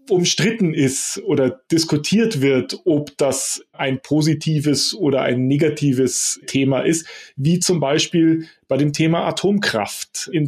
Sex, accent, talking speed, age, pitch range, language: male, German, 125 wpm, 30-49, 135-170 Hz, German